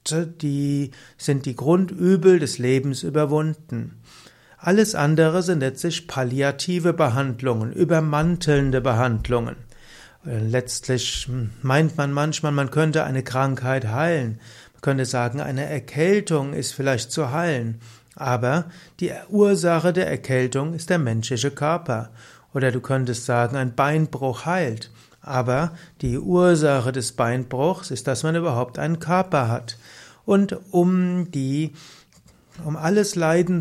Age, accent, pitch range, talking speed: 60-79, German, 125-160 Hz, 120 wpm